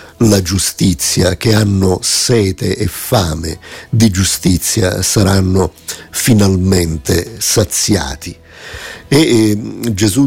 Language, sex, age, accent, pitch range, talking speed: Italian, male, 50-69, native, 90-105 Hz, 80 wpm